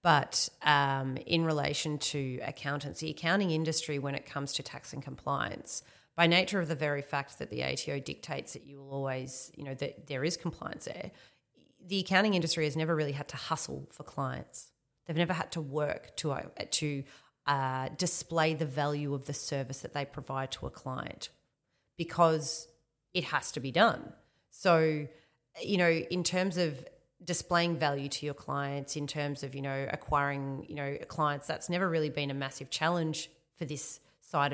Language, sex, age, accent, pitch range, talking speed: English, female, 30-49, Australian, 140-165 Hz, 180 wpm